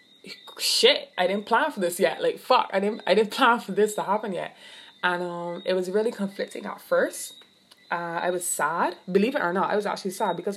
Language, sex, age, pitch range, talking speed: English, female, 20-39, 175-210 Hz, 225 wpm